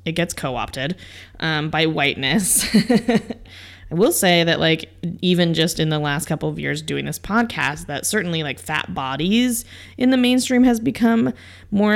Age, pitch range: 20-39, 140-215 Hz